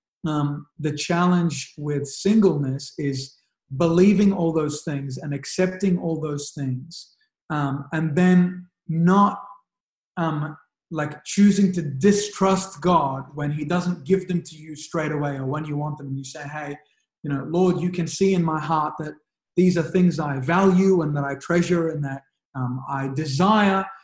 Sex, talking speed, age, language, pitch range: male, 165 wpm, 30-49, English, 145-180 Hz